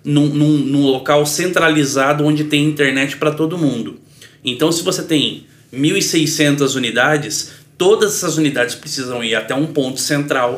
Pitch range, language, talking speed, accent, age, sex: 135-160 Hz, Portuguese, 140 wpm, Brazilian, 20-39, male